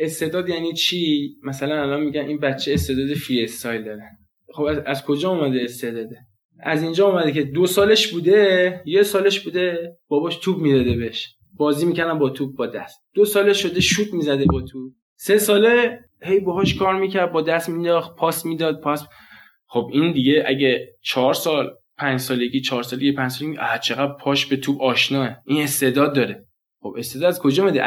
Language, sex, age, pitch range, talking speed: Persian, male, 20-39, 135-185 Hz, 180 wpm